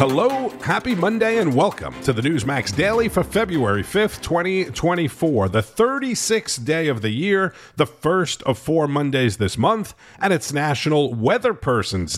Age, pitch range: 50-69, 110-145 Hz